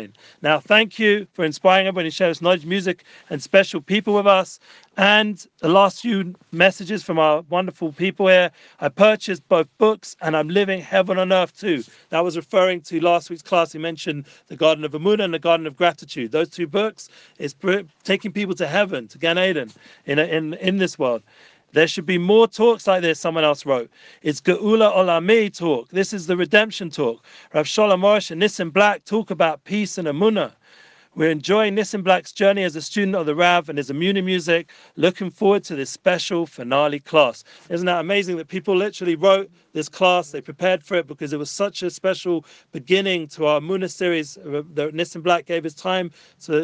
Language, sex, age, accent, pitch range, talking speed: English, male, 40-59, British, 160-195 Hz, 200 wpm